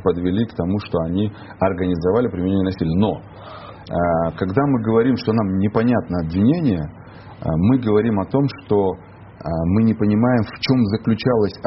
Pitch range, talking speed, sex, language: 90-110 Hz, 140 wpm, male, Russian